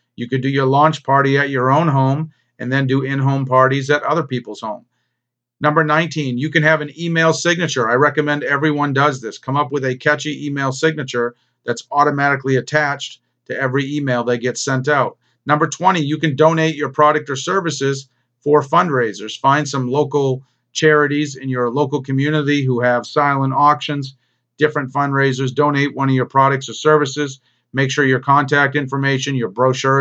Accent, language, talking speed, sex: American, English, 175 wpm, male